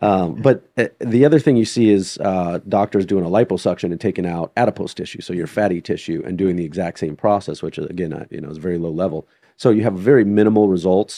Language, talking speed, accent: English, 235 wpm, American